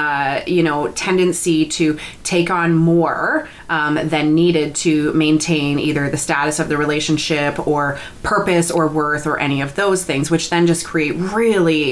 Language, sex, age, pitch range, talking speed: English, female, 30-49, 145-170 Hz, 165 wpm